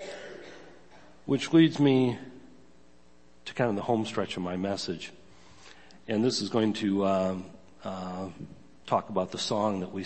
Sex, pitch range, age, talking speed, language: male, 95-130 Hz, 40-59, 150 wpm, English